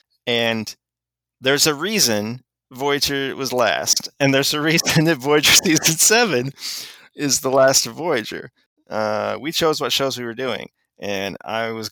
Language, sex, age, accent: English, male, 30-49, American